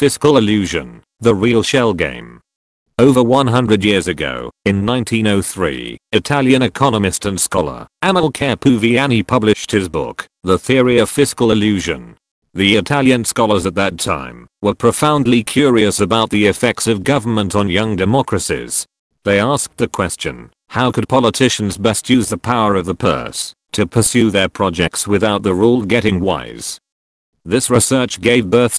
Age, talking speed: 40-59, 145 wpm